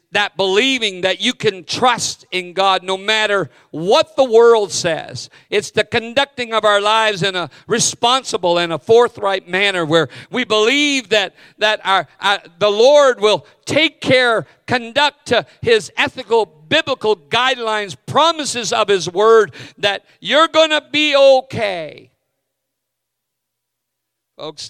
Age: 50-69